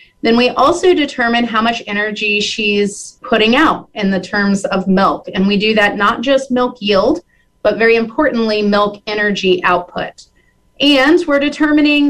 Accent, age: American, 30-49